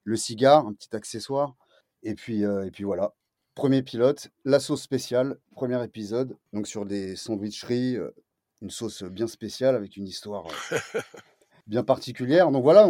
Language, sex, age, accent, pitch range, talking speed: French, male, 30-49, French, 105-130 Hz, 165 wpm